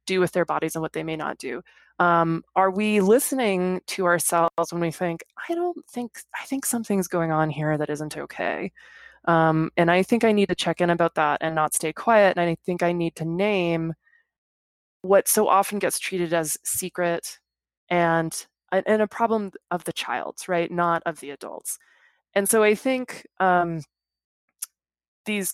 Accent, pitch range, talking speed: American, 160-200 Hz, 185 wpm